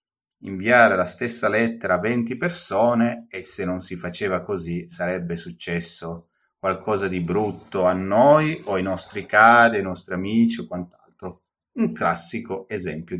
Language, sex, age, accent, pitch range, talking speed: Italian, male, 30-49, native, 90-120 Hz, 145 wpm